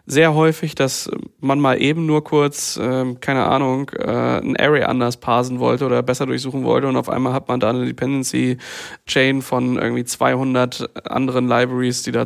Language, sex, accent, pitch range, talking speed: German, male, German, 125-150 Hz, 175 wpm